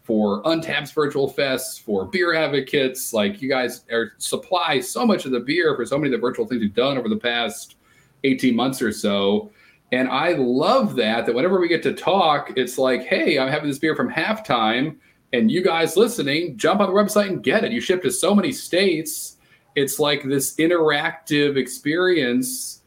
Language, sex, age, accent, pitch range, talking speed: English, male, 40-59, American, 120-170 Hz, 195 wpm